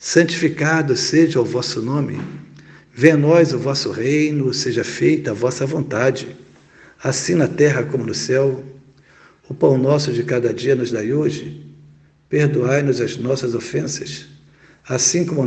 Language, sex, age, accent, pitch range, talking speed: Portuguese, male, 60-79, Brazilian, 120-150 Hz, 140 wpm